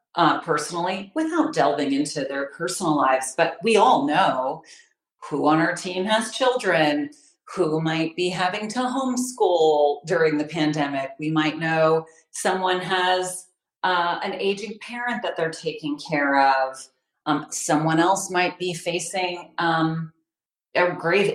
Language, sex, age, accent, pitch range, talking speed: English, female, 40-59, American, 150-195 Hz, 140 wpm